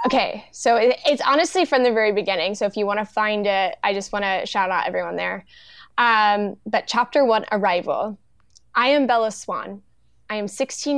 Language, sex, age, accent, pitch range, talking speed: English, female, 10-29, American, 205-270 Hz, 180 wpm